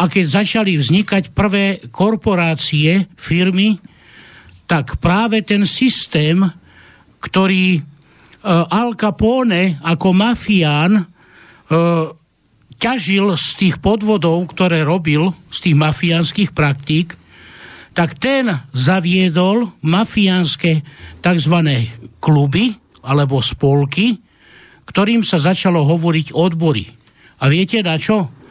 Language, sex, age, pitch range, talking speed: Slovak, male, 60-79, 160-200 Hz, 90 wpm